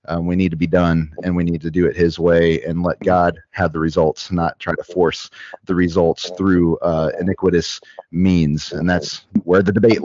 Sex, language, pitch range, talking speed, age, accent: male, English, 95-115 Hz, 210 wpm, 30-49, American